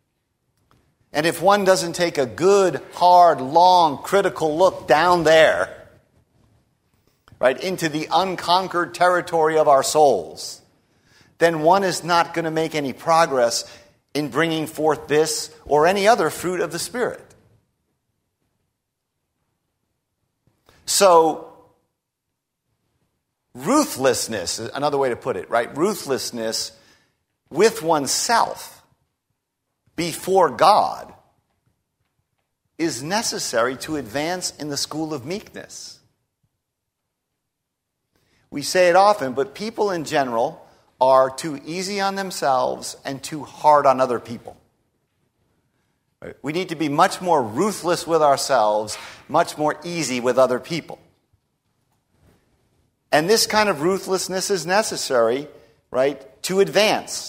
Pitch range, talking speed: 140-185 Hz, 115 wpm